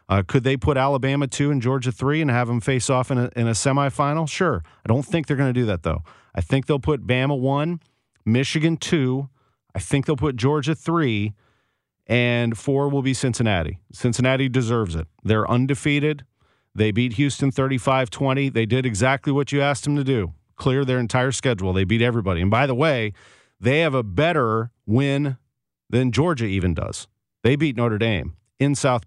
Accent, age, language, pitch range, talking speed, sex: American, 40-59, English, 110-140 Hz, 190 wpm, male